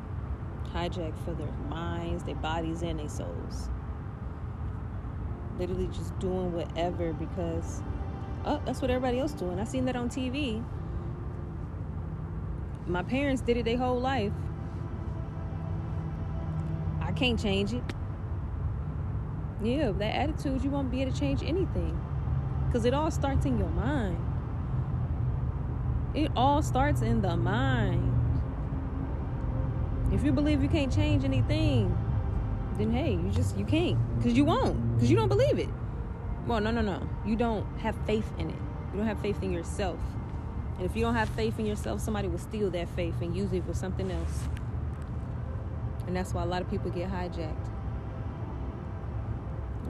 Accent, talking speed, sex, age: American, 150 wpm, female, 20-39